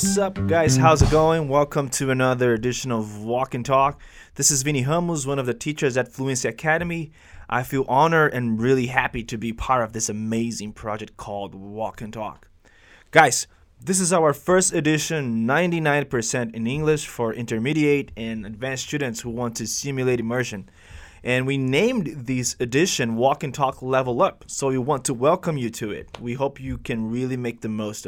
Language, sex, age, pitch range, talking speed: Portuguese, male, 20-39, 115-155 Hz, 185 wpm